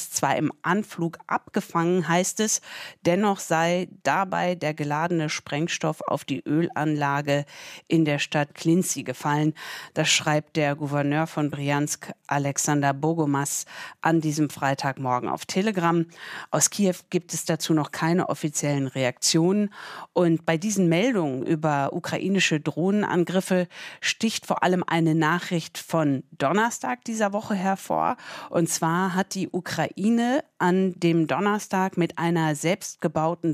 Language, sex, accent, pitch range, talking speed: German, female, German, 155-190 Hz, 125 wpm